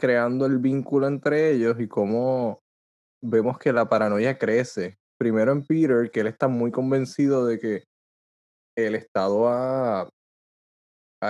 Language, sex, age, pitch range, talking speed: Spanish, male, 20-39, 110-140 Hz, 140 wpm